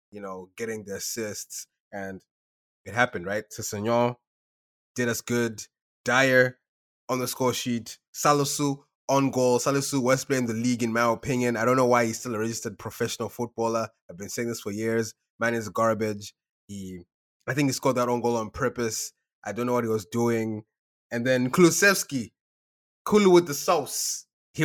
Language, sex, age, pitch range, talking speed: English, male, 20-39, 110-145 Hz, 180 wpm